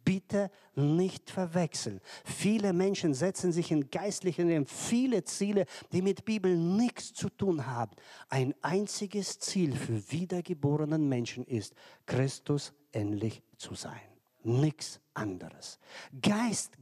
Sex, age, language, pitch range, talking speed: male, 50-69, German, 130-185 Hz, 120 wpm